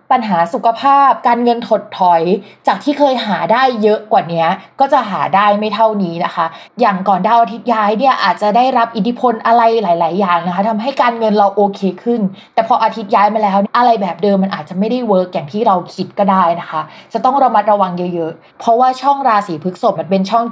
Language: Thai